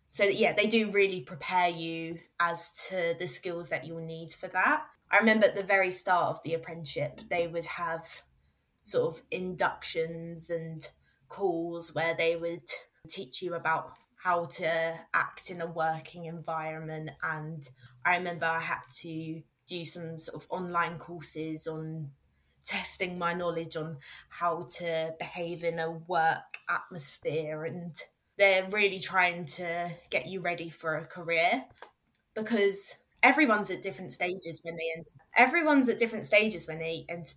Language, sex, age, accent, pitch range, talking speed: English, female, 20-39, British, 165-190 Hz, 155 wpm